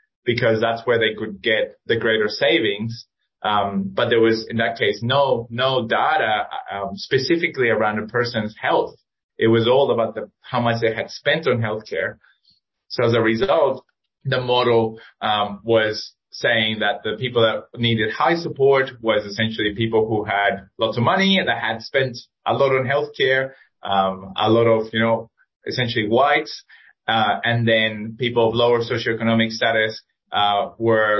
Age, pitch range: 30-49, 110-130 Hz